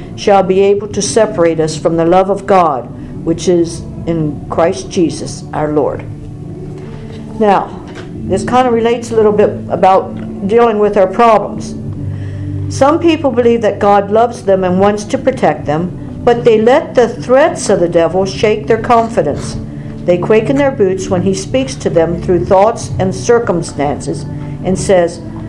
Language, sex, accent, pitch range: English, female, American, 155-235 Hz